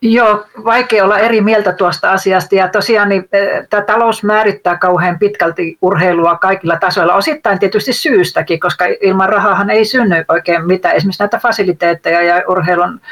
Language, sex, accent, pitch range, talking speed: Finnish, female, native, 185-235 Hz, 150 wpm